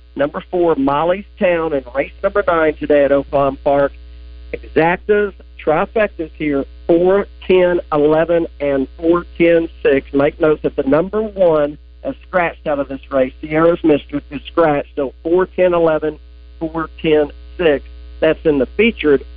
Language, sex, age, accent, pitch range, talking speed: English, male, 50-69, American, 140-165 Hz, 150 wpm